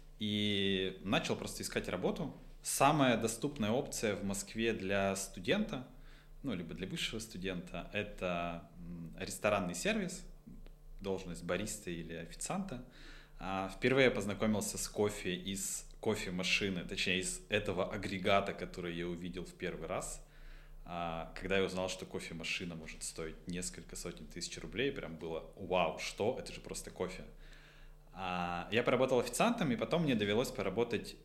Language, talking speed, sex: Russian, 130 wpm, male